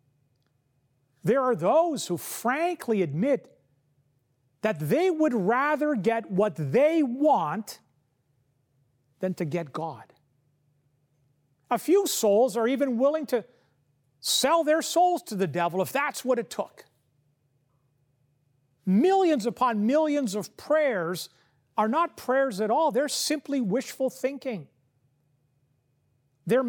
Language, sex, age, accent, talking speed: English, male, 40-59, American, 115 wpm